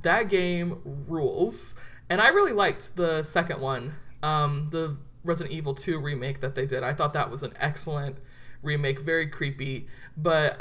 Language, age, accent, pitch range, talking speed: English, 20-39, American, 145-175 Hz, 165 wpm